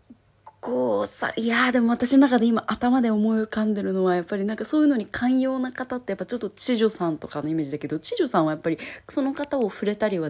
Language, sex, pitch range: Japanese, female, 155-255 Hz